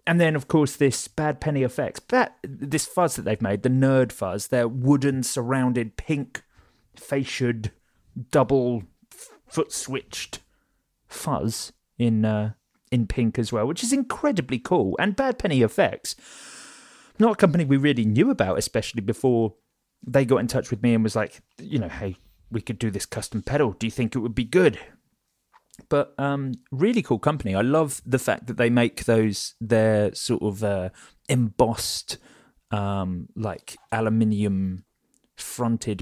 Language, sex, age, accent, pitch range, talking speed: English, male, 30-49, British, 110-135 Hz, 155 wpm